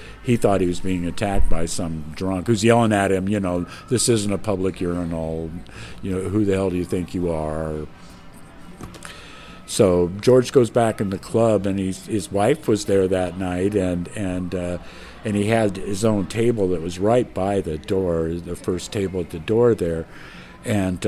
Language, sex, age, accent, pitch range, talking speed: English, male, 50-69, American, 90-105 Hz, 195 wpm